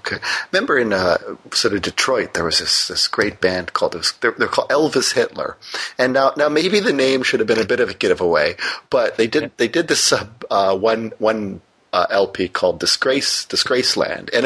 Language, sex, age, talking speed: English, male, 30-49, 210 wpm